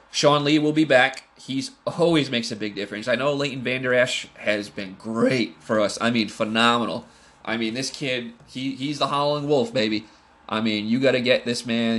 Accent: American